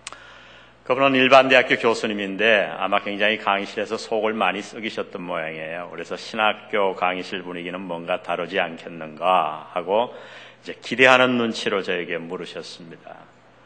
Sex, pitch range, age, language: male, 90-125 Hz, 40-59, Korean